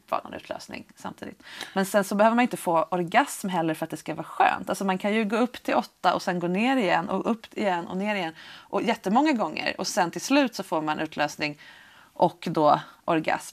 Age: 30-49